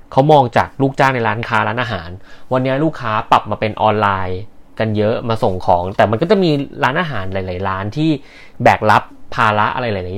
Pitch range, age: 100-125 Hz, 20-39